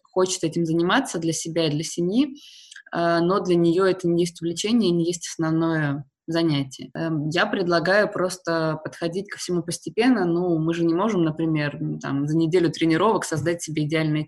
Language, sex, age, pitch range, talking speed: Russian, female, 20-39, 160-180 Hz, 160 wpm